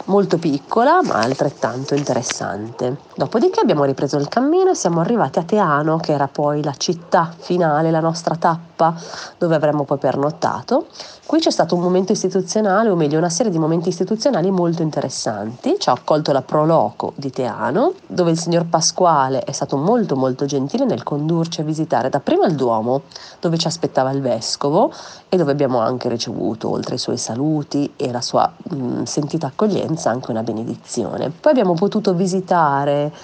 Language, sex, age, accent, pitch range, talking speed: Italian, female, 30-49, native, 145-195 Hz, 165 wpm